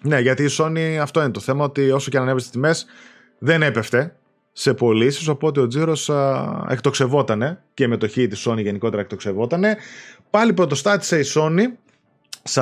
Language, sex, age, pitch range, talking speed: Greek, male, 30-49, 130-195 Hz, 165 wpm